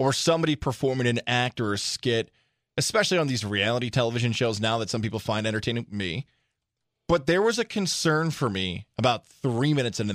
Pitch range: 115-150 Hz